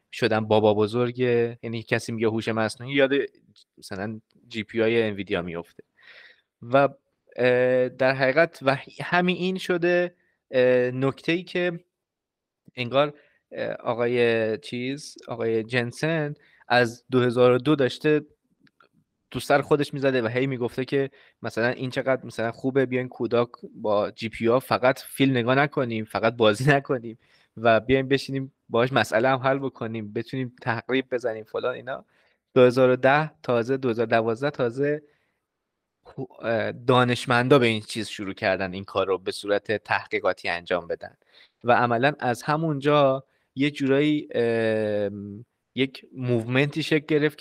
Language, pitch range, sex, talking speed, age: Persian, 115-140 Hz, male, 125 wpm, 20-39